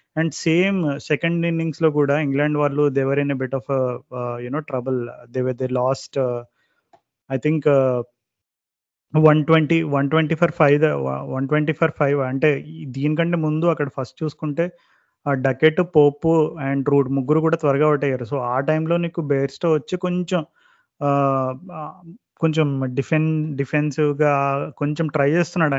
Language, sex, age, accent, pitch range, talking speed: Telugu, male, 30-49, native, 135-155 Hz, 145 wpm